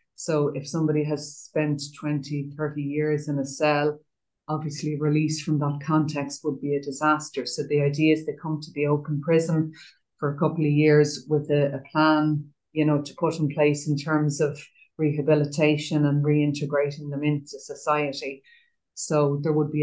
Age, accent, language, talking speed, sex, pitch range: 30-49, Irish, English, 175 wpm, female, 145-155 Hz